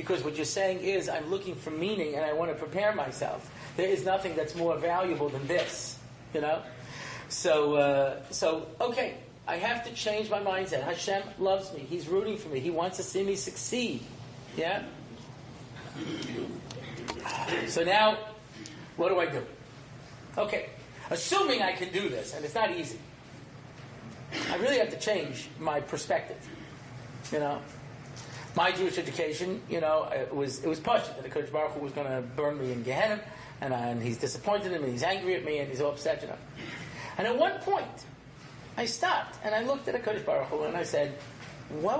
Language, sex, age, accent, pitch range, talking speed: English, male, 40-59, American, 145-210 Hz, 185 wpm